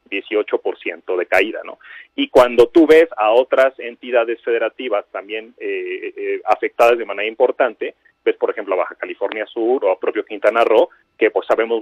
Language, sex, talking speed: Spanish, male, 175 wpm